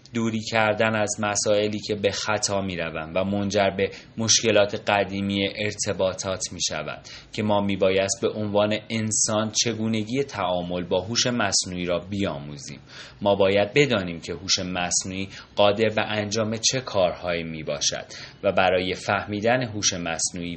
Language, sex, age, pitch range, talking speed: Persian, male, 30-49, 90-110 Hz, 140 wpm